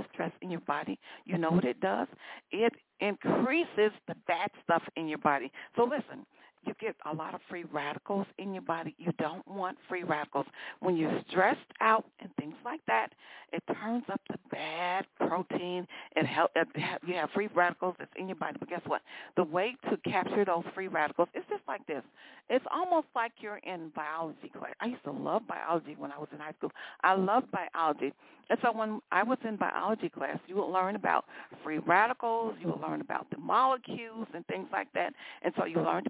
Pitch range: 165-225 Hz